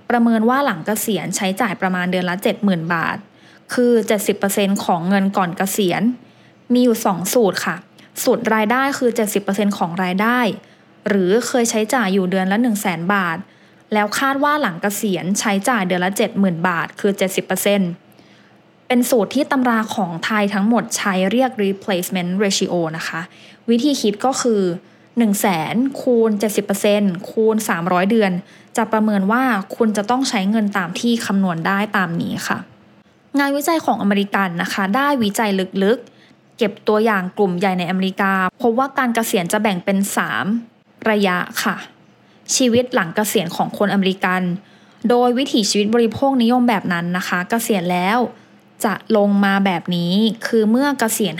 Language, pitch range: English, 190-235 Hz